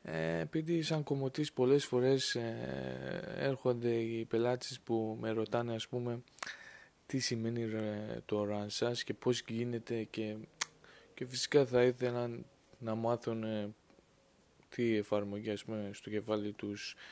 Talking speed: 110 wpm